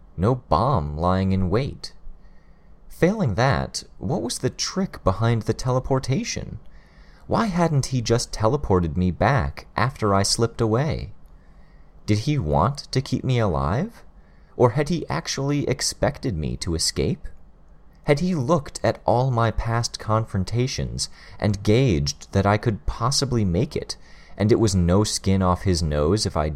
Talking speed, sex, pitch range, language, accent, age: 150 wpm, male, 80-120 Hz, English, American, 30-49